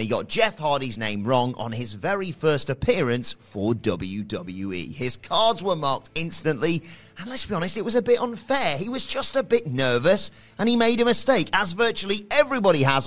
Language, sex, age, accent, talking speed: English, male, 30-49, British, 195 wpm